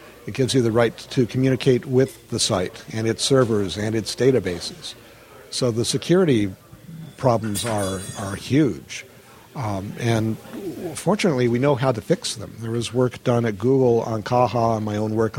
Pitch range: 105-130 Hz